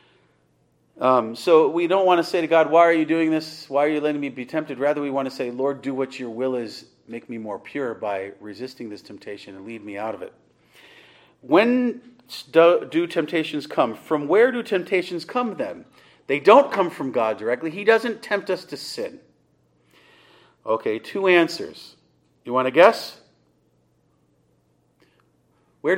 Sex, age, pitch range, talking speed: male, 40-59, 120-195 Hz, 175 wpm